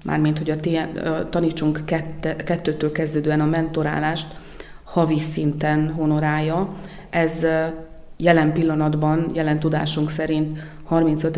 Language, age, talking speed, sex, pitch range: Hungarian, 30-49, 105 wpm, female, 155-165 Hz